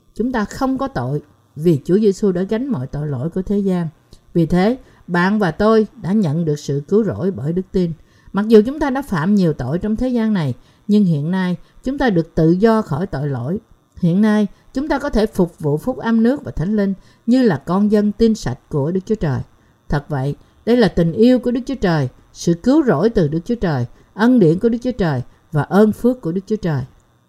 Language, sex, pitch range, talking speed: Vietnamese, female, 155-230 Hz, 235 wpm